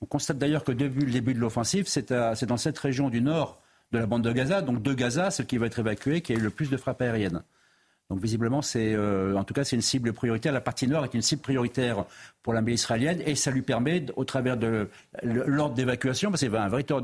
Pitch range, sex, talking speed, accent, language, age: 115-140 Hz, male, 250 wpm, French, French, 50-69